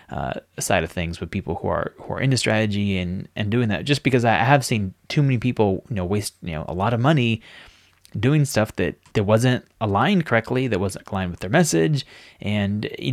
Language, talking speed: English, 220 wpm